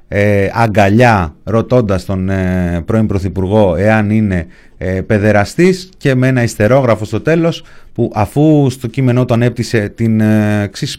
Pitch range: 105-130 Hz